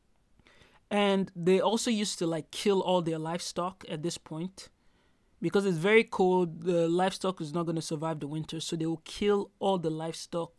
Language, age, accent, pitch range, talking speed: English, 30-49, Nigerian, 160-185 Hz, 185 wpm